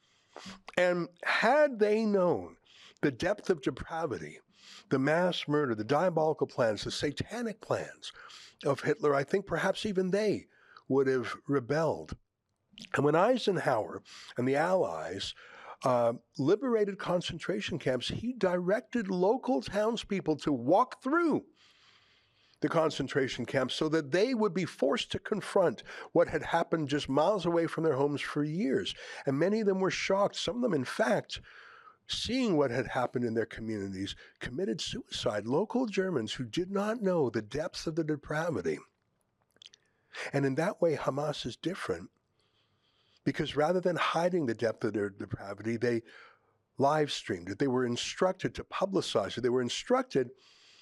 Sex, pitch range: male, 135-195 Hz